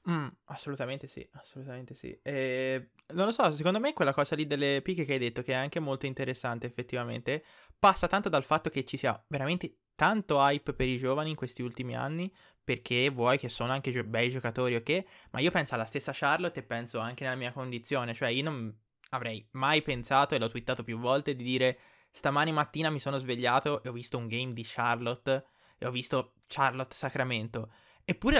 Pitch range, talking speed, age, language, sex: 125-160 Hz, 200 wpm, 20-39, Italian, male